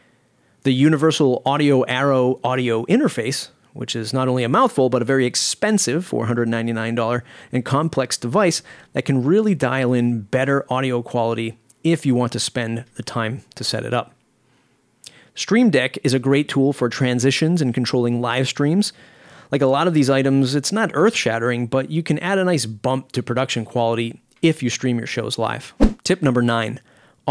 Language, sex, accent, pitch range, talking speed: English, male, American, 120-145 Hz, 175 wpm